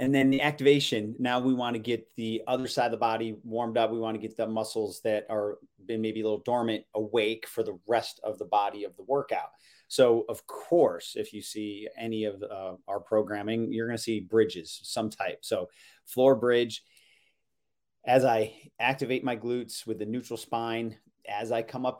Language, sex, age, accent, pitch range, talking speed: English, male, 30-49, American, 105-120 Hz, 200 wpm